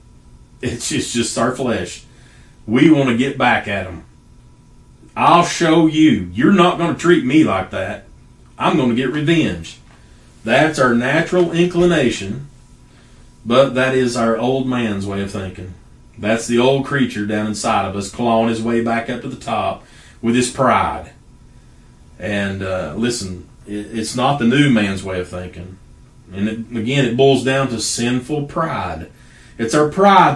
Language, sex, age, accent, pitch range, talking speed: English, male, 40-59, American, 105-140 Hz, 165 wpm